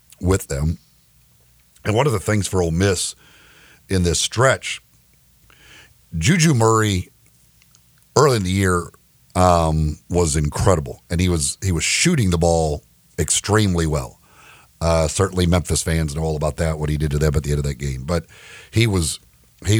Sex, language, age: male, English, 50-69